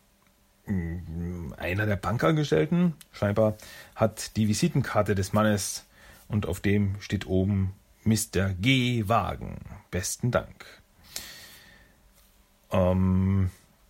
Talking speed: 80 wpm